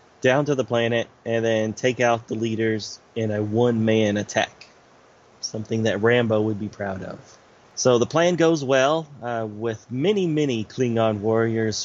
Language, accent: English, American